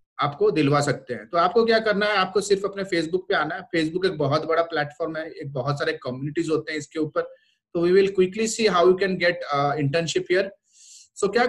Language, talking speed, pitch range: Hindi, 215 wpm, 150-195 Hz